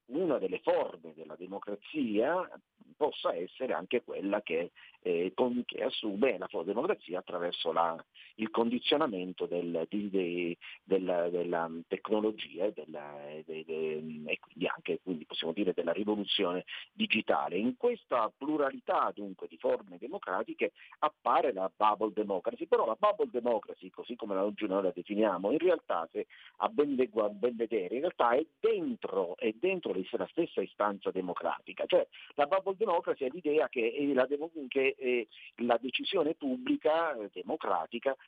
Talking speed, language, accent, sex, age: 145 wpm, Italian, native, male, 50-69